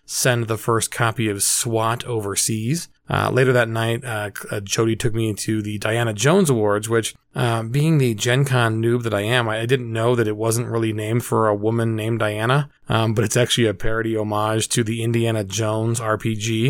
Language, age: English, 20-39